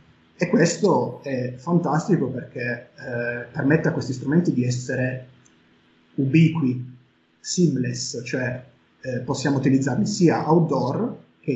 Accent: native